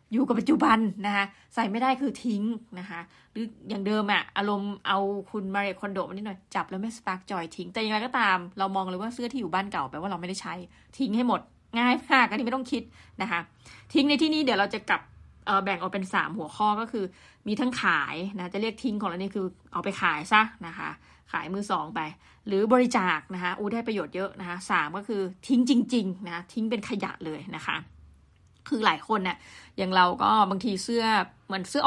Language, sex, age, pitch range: Thai, female, 20-39, 190-235 Hz